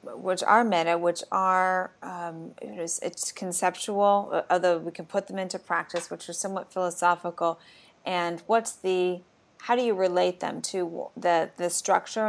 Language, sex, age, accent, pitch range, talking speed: English, female, 30-49, American, 175-195 Hz, 150 wpm